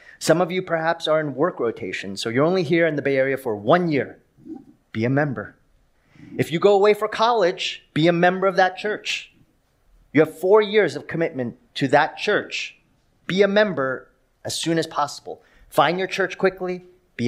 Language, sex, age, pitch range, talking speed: English, male, 30-49, 120-170 Hz, 190 wpm